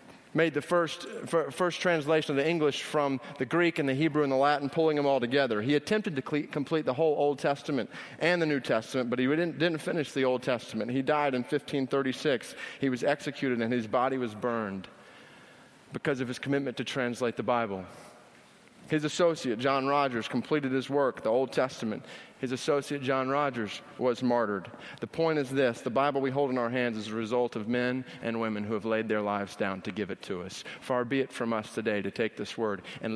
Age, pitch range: 30-49, 115-145 Hz